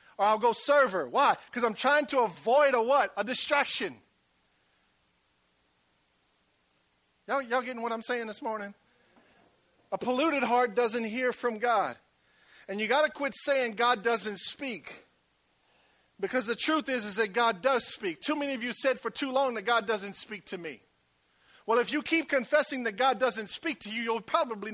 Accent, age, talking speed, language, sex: American, 50-69, 180 wpm, English, male